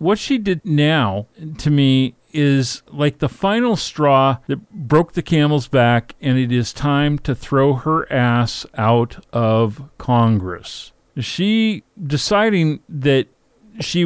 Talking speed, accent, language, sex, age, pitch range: 130 wpm, American, English, male, 40-59, 120-155 Hz